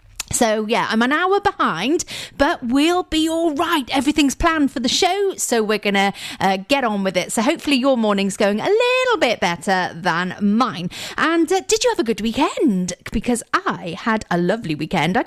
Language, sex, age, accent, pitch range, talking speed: English, female, 40-59, British, 195-315 Hz, 195 wpm